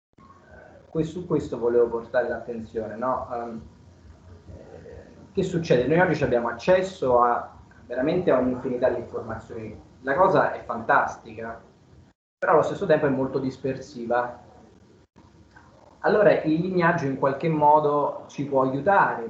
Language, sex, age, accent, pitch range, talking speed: Italian, male, 30-49, native, 120-155 Hz, 120 wpm